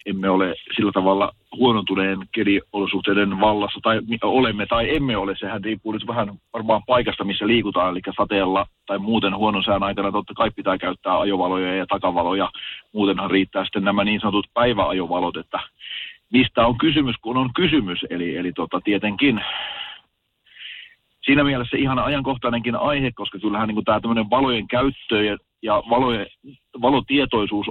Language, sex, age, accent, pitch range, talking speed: Finnish, male, 40-59, native, 95-120 Hz, 145 wpm